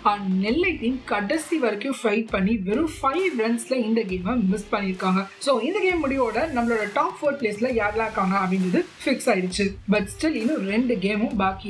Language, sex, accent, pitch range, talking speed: Tamil, female, native, 195-250 Hz, 50 wpm